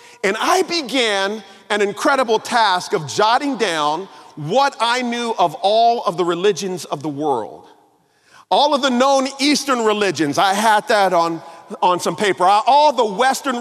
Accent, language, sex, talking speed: American, English, male, 160 wpm